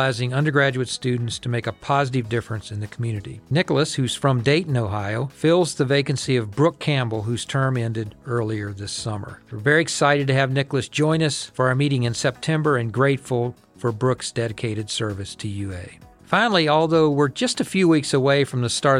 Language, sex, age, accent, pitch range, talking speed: English, male, 50-69, American, 115-145 Hz, 185 wpm